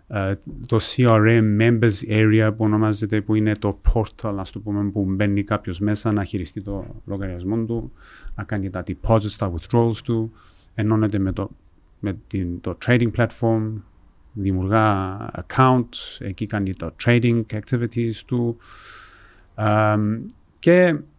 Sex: male